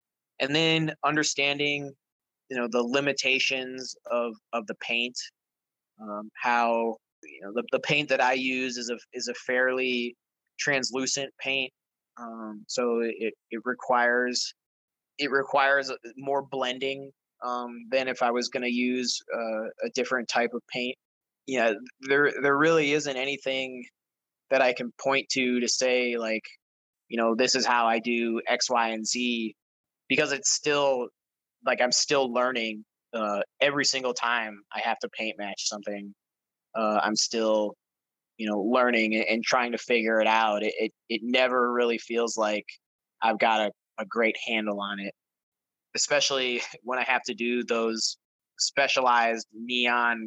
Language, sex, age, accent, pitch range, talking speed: English, male, 20-39, American, 110-130 Hz, 155 wpm